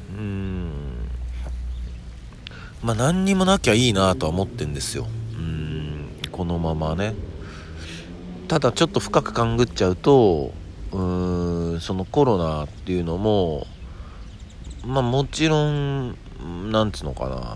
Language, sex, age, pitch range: Japanese, male, 40-59, 80-105 Hz